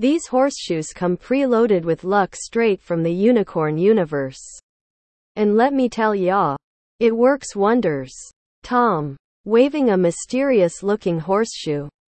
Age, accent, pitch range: 40-59, American, 165-230 Hz